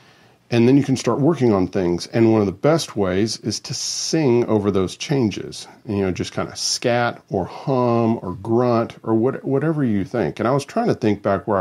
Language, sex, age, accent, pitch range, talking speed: English, male, 50-69, American, 95-120 Hz, 220 wpm